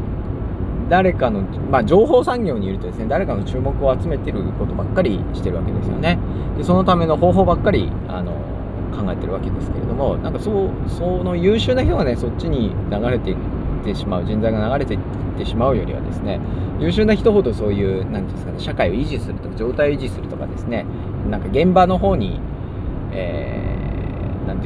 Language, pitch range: Japanese, 95-115 Hz